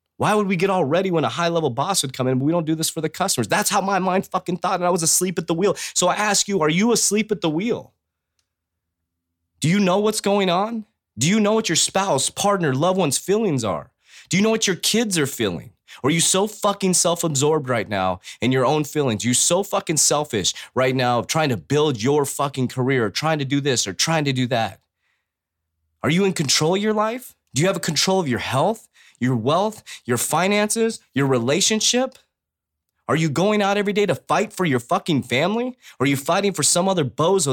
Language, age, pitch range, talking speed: English, 20-39, 130-200 Hz, 225 wpm